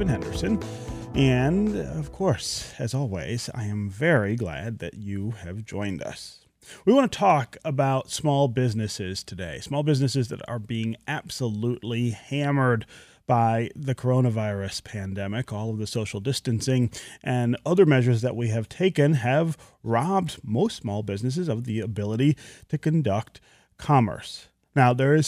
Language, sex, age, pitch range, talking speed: English, male, 30-49, 110-145 Hz, 140 wpm